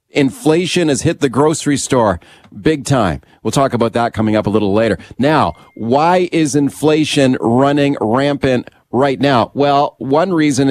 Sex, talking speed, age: male, 155 wpm, 40-59